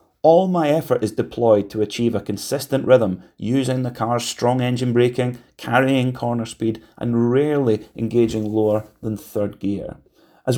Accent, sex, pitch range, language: British, male, 110-155 Hz, English